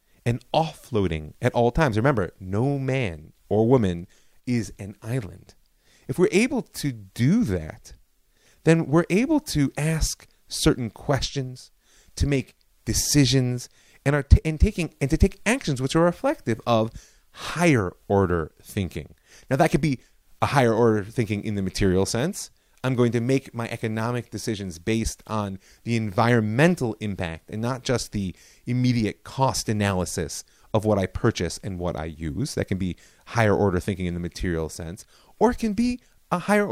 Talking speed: 165 wpm